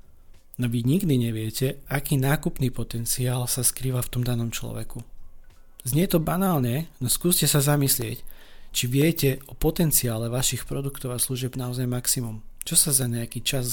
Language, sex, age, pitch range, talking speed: Slovak, male, 40-59, 120-140 Hz, 155 wpm